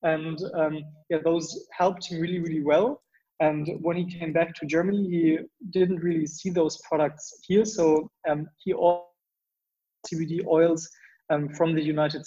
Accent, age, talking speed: German, 20-39, 160 wpm